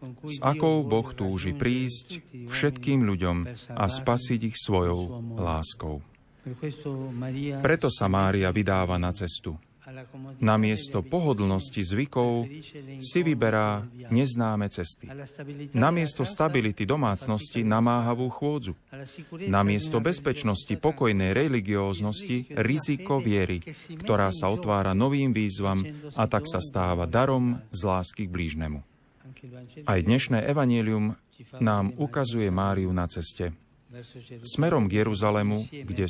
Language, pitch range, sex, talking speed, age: Slovak, 100-130 Hz, male, 105 wpm, 30-49